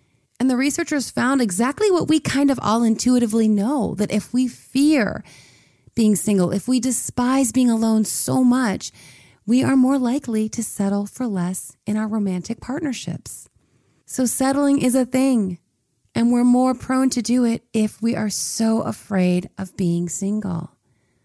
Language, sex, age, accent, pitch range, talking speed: English, female, 30-49, American, 185-255 Hz, 160 wpm